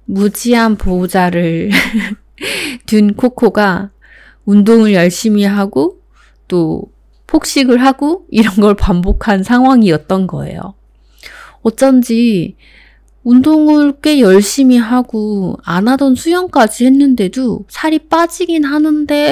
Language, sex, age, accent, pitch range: Korean, female, 20-39, native, 185-255 Hz